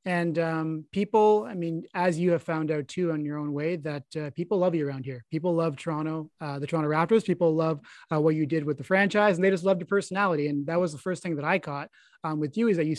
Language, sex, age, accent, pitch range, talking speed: English, male, 20-39, American, 160-195 Hz, 275 wpm